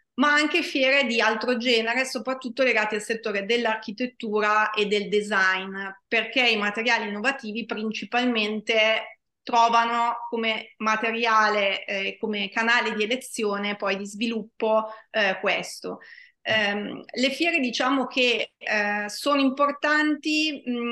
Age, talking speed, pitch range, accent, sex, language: 30-49, 115 wpm, 220-260 Hz, native, female, Italian